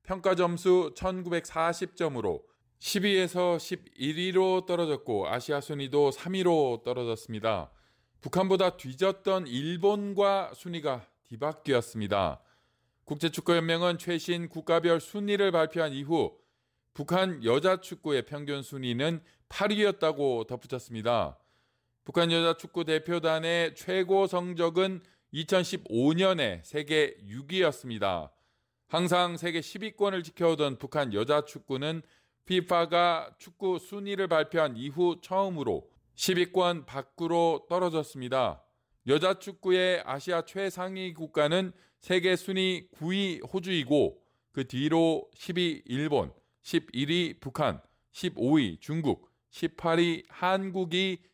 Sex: male